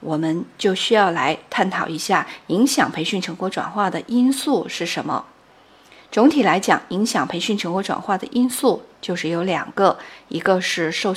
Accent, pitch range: native, 175-245 Hz